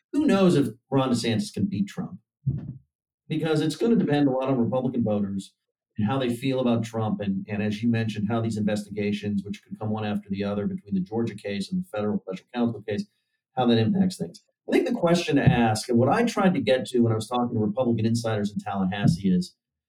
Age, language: 40-59, English